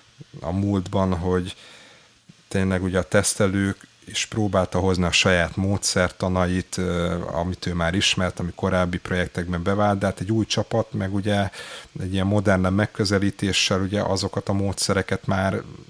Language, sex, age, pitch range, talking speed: Hungarian, male, 30-49, 90-100 Hz, 130 wpm